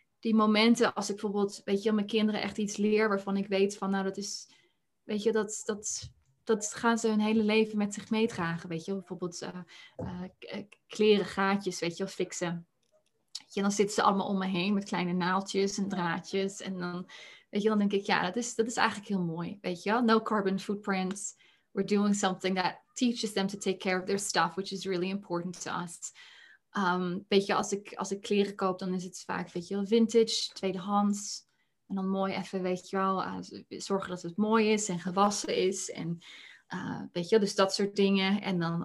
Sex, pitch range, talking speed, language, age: female, 185-215 Hz, 215 wpm, Dutch, 20-39